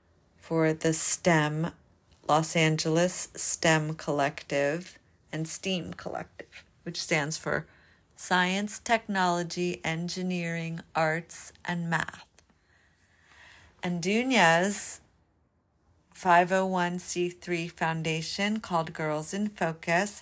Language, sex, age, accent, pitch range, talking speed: English, female, 40-59, American, 150-180 Hz, 80 wpm